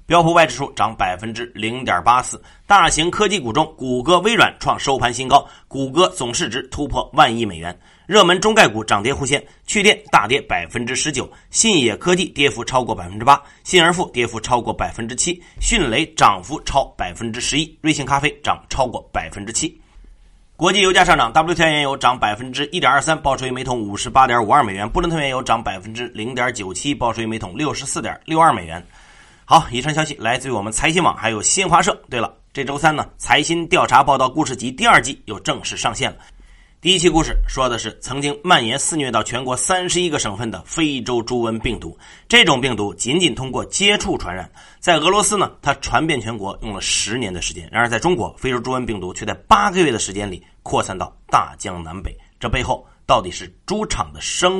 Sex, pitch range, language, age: male, 110-160 Hz, Chinese, 30-49